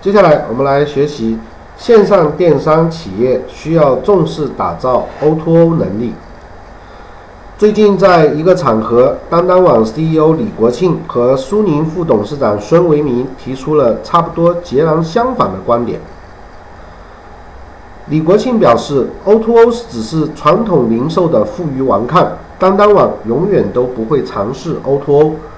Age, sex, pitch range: 50-69, male, 125-190 Hz